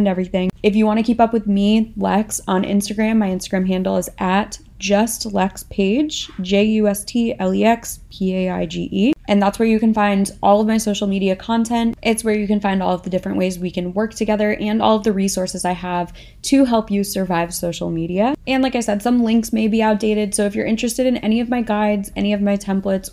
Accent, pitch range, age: American, 195-230 Hz, 20-39